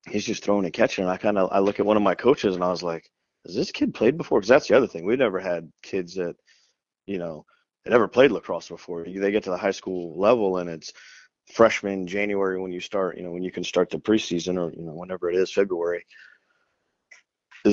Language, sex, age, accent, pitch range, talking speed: English, male, 30-49, American, 90-100 Hz, 245 wpm